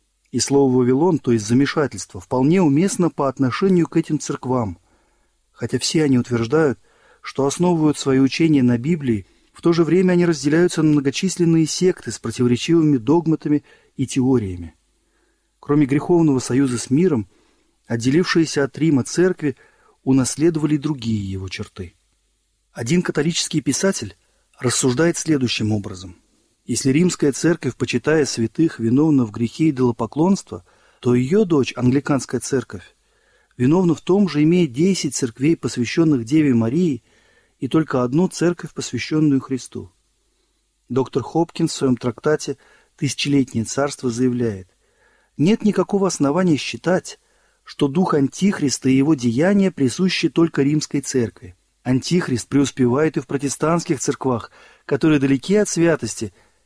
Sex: male